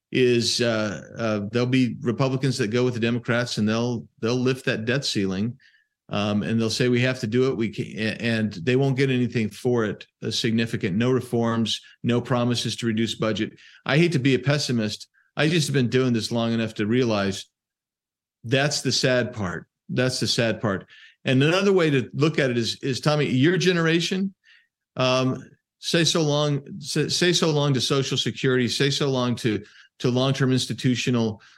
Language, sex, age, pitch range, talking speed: English, male, 50-69, 115-140 Hz, 190 wpm